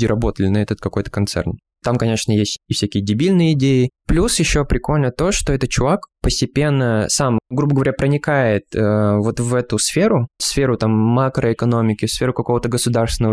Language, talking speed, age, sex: Russian, 160 wpm, 20-39, male